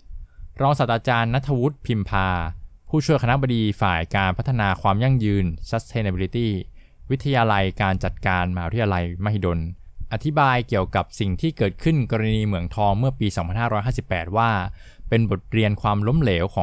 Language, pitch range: Thai, 90-115 Hz